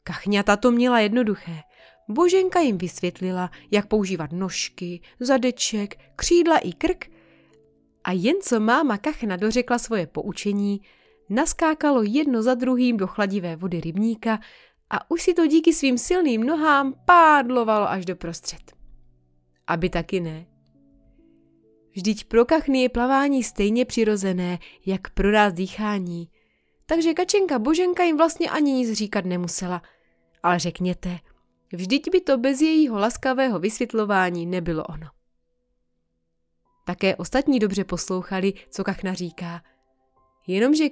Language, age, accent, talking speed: Czech, 20-39, native, 125 wpm